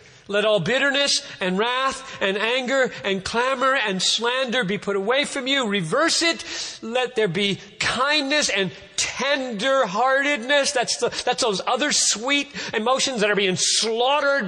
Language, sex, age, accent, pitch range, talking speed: English, male, 50-69, American, 160-255 Hz, 140 wpm